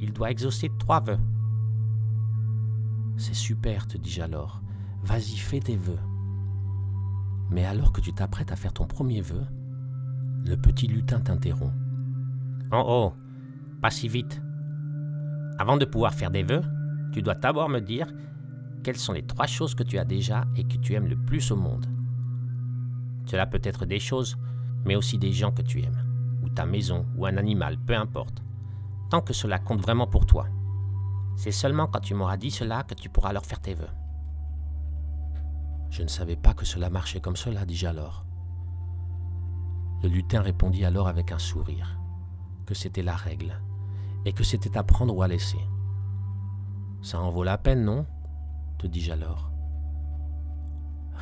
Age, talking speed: 50-69, 170 wpm